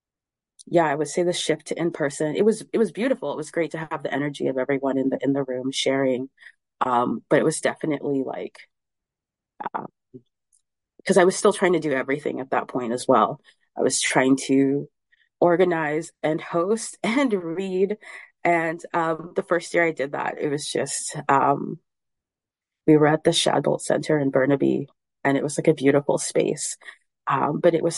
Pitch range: 140-170 Hz